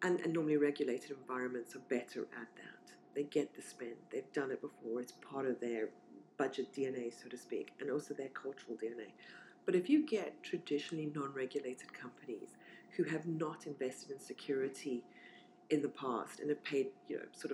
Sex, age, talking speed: female, 40-59, 180 wpm